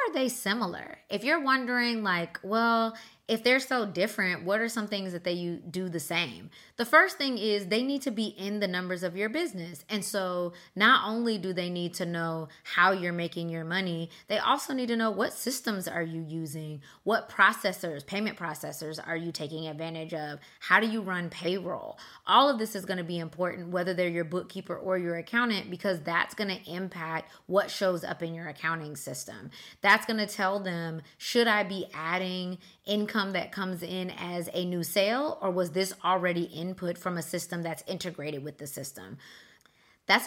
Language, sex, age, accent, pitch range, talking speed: English, female, 20-39, American, 170-210 Hz, 190 wpm